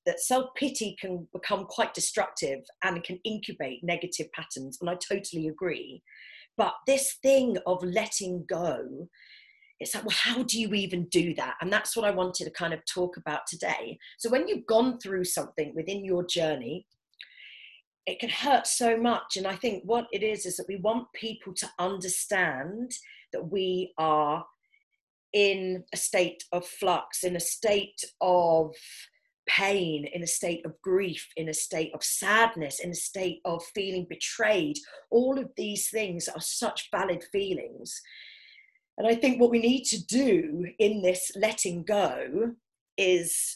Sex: female